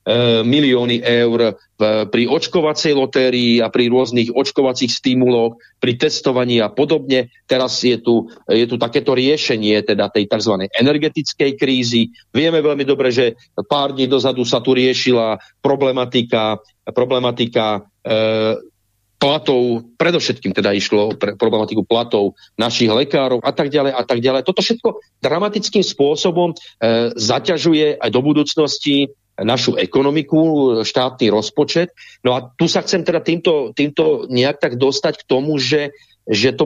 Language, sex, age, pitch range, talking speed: English, male, 40-59, 120-150 Hz, 130 wpm